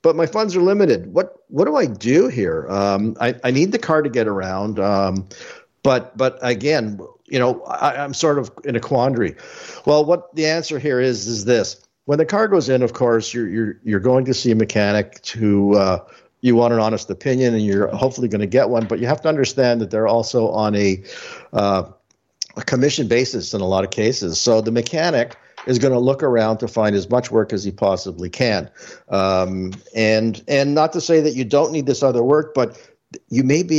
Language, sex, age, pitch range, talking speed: English, male, 60-79, 110-145 Hz, 215 wpm